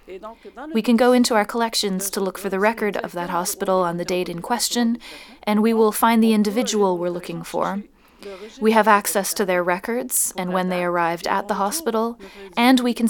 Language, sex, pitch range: English, female, 185-230 Hz